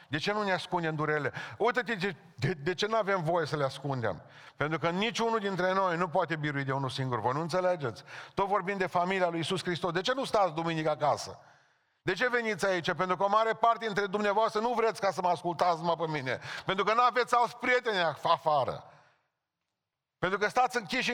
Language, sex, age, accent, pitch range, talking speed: Romanian, male, 40-59, native, 130-210 Hz, 210 wpm